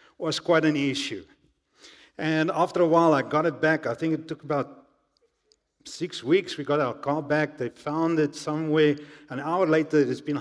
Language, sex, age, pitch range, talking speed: English, male, 50-69, 145-195 Hz, 190 wpm